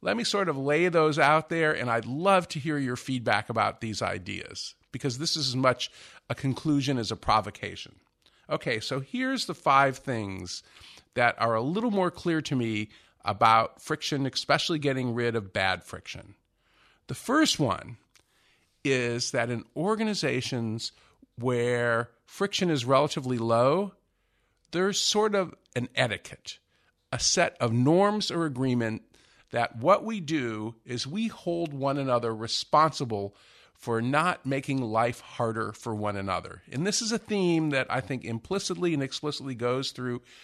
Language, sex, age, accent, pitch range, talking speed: English, male, 50-69, American, 115-165 Hz, 155 wpm